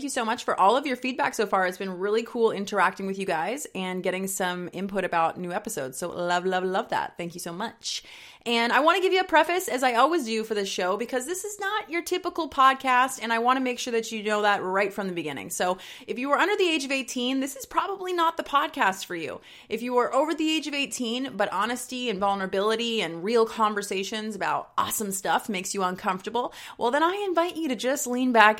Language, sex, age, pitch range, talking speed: English, female, 30-49, 180-245 Hz, 245 wpm